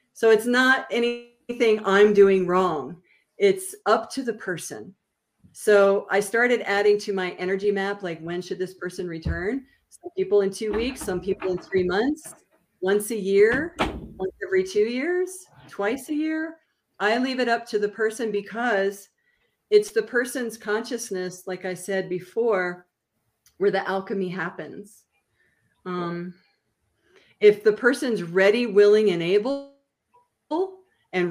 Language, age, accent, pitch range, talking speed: English, 40-59, American, 180-240 Hz, 145 wpm